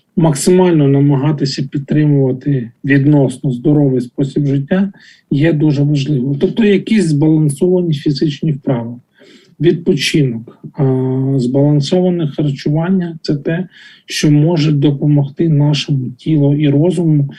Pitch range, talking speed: 140-160 Hz, 95 wpm